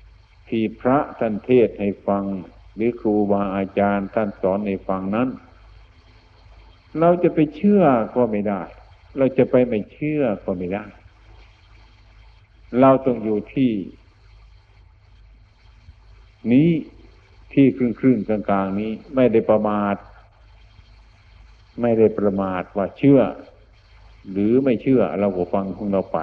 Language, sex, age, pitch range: Thai, male, 60-79, 95-115 Hz